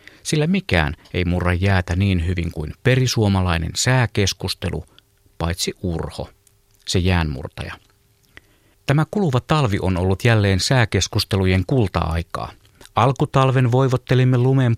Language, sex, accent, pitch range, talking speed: Finnish, male, native, 100-125 Hz, 100 wpm